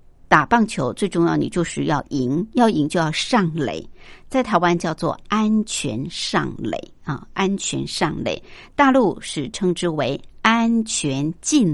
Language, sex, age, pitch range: Chinese, male, 60-79, 160-215 Hz